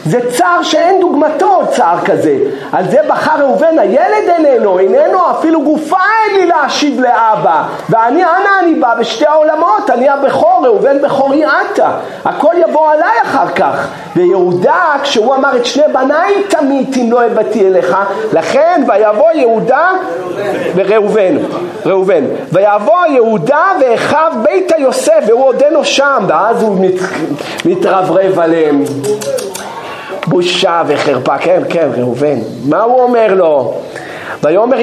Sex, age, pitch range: male, 50-69, 210-310 Hz